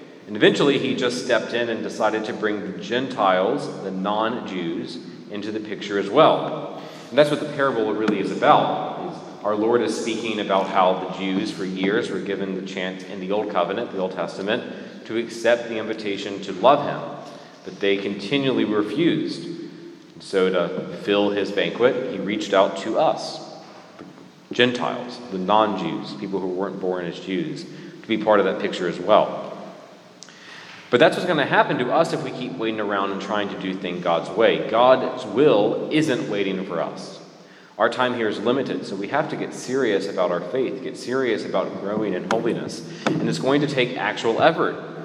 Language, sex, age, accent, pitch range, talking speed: English, male, 30-49, American, 95-120 Hz, 185 wpm